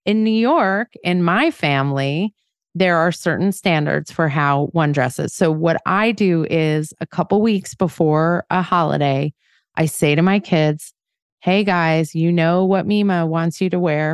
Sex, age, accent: female, 30-49, American